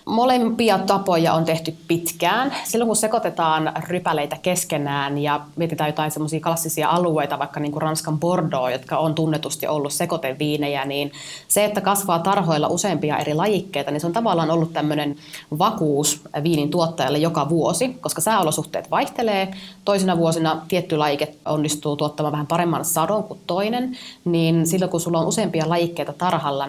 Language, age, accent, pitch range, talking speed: Finnish, 30-49, native, 150-175 Hz, 150 wpm